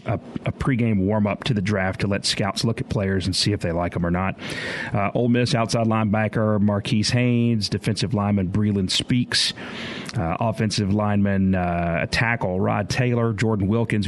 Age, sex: 40-59, male